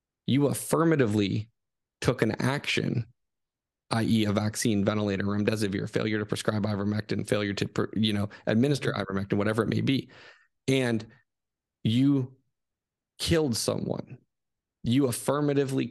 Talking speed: 115 wpm